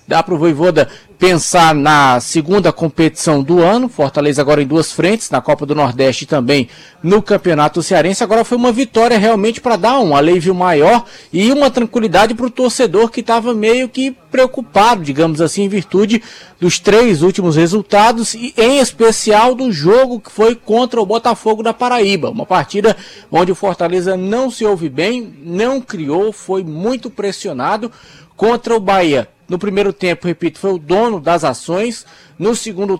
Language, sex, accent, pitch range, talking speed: Portuguese, male, Brazilian, 170-225 Hz, 170 wpm